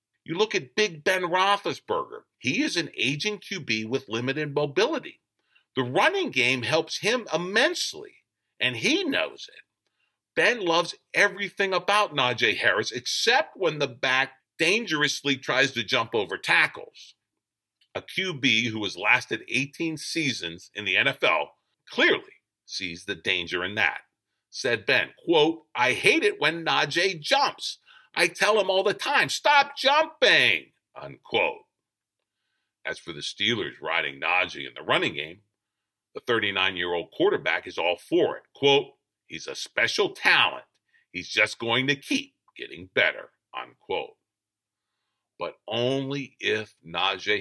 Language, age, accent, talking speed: English, 50-69, American, 135 wpm